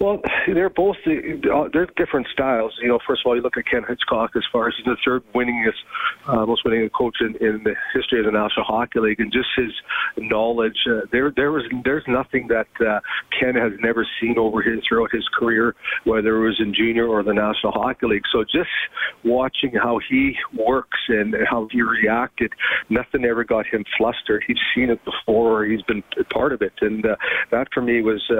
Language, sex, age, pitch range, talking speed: English, male, 40-59, 110-120 Hz, 205 wpm